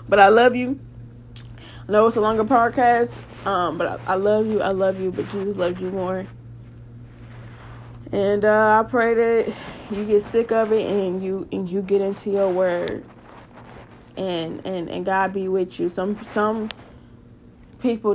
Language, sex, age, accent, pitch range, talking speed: English, female, 10-29, American, 190-250 Hz, 170 wpm